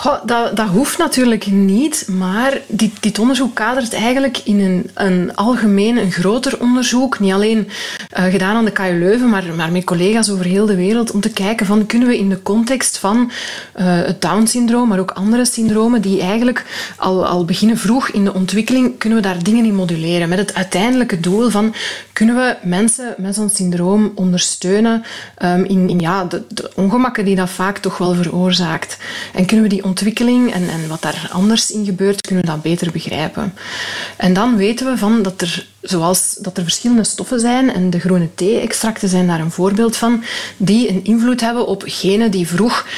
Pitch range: 185-230 Hz